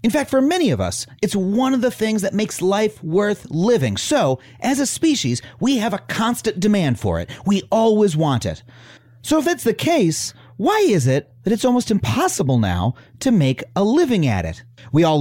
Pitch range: 140-230 Hz